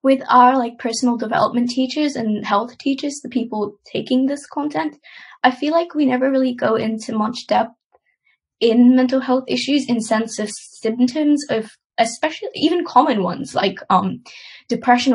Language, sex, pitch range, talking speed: English, female, 205-265 Hz, 160 wpm